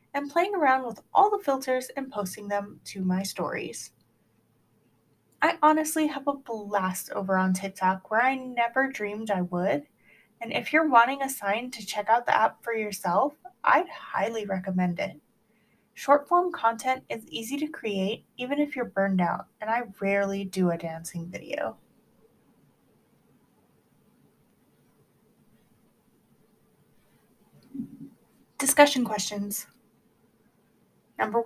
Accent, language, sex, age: American, English, female, 20-39